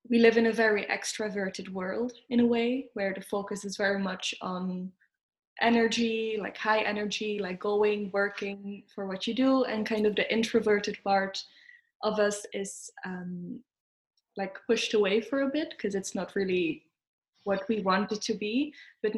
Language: English